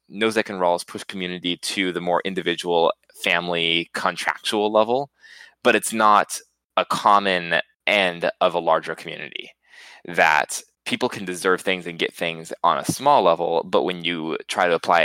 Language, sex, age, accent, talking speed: English, male, 20-39, American, 160 wpm